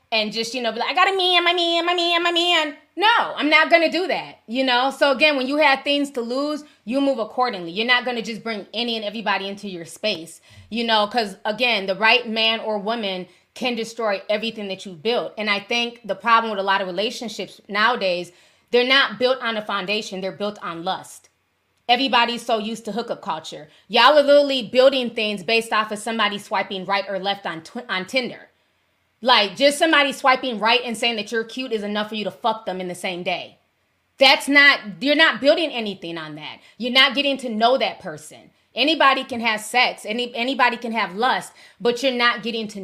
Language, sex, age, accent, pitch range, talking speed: English, female, 20-39, American, 210-265 Hz, 220 wpm